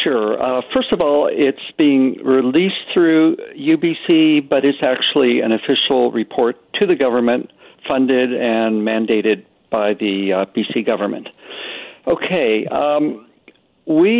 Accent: American